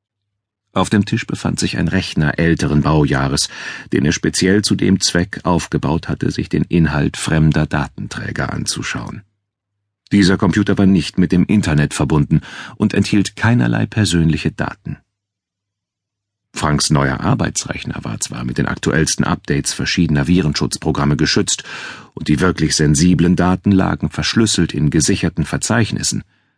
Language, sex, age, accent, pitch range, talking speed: German, male, 40-59, German, 80-100 Hz, 130 wpm